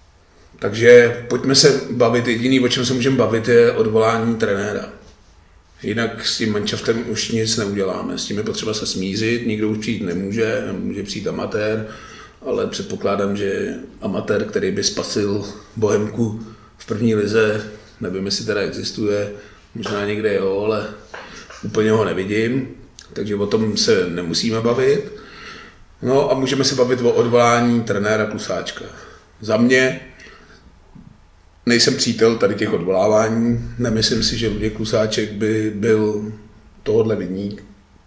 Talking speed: 135 wpm